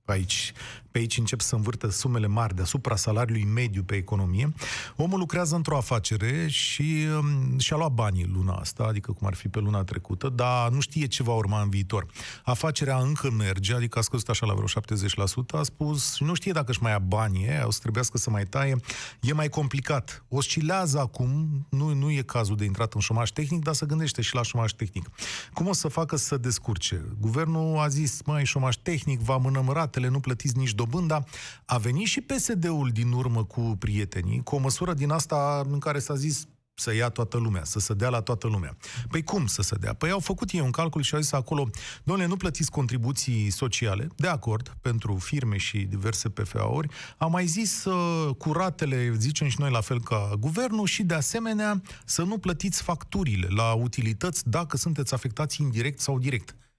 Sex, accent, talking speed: male, native, 195 wpm